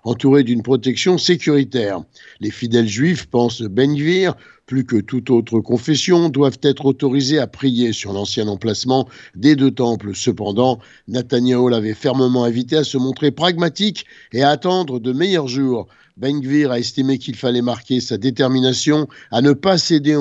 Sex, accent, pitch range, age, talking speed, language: male, French, 120-150 Hz, 50-69, 160 wpm, French